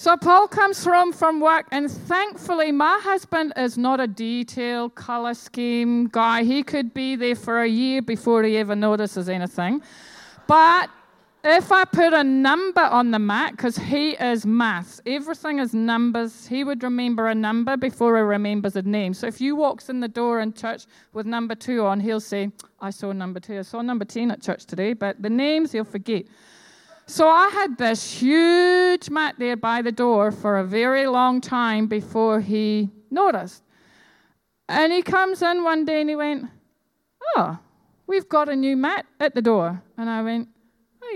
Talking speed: 185 wpm